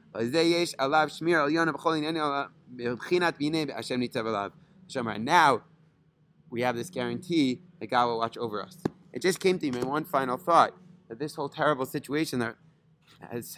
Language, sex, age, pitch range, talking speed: English, male, 30-49, 125-160 Hz, 120 wpm